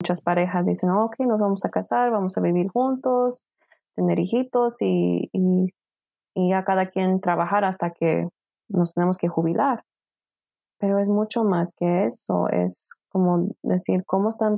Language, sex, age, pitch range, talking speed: Spanish, female, 20-39, 170-200 Hz, 155 wpm